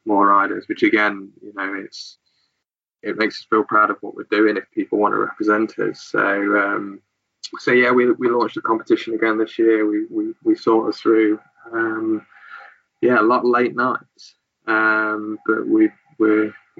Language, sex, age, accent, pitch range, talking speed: English, male, 20-39, British, 105-125 Hz, 180 wpm